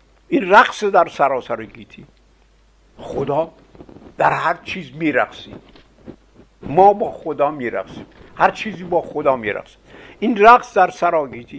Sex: male